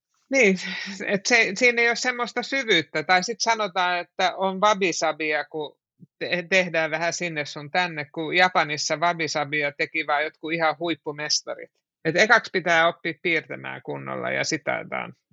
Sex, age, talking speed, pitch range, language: male, 60-79, 140 wpm, 155-215 Hz, Finnish